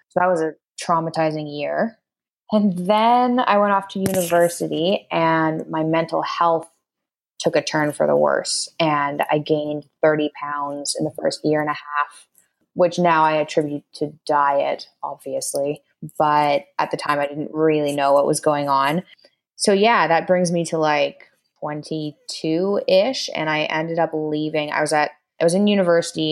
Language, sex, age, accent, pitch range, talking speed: English, female, 20-39, American, 150-180 Hz, 170 wpm